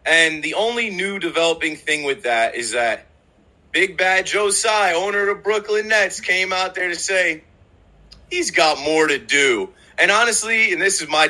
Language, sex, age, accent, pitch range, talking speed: English, male, 30-49, American, 145-195 Hz, 185 wpm